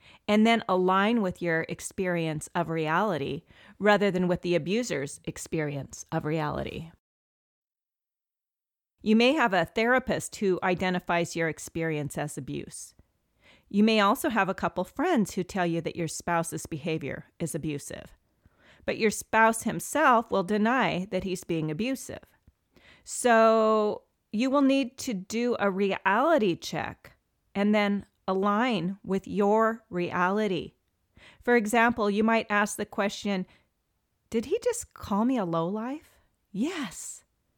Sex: female